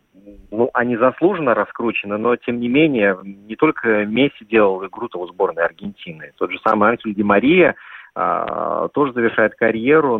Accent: native